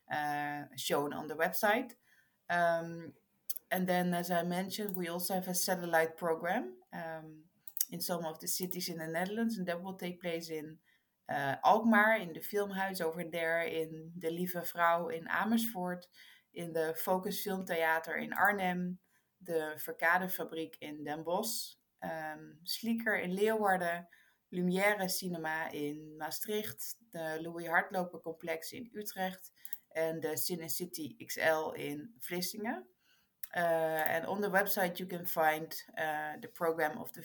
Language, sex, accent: English, female, Dutch